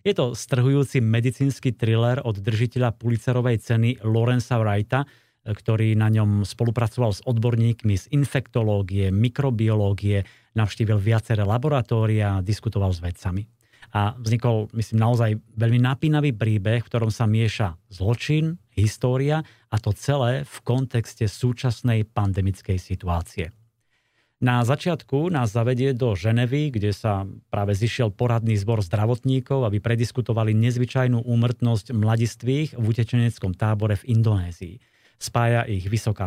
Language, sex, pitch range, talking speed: Slovak, male, 110-125 Hz, 120 wpm